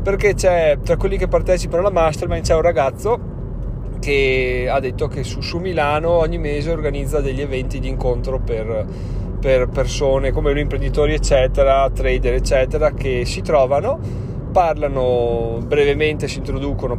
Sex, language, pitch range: male, Italian, 120-145 Hz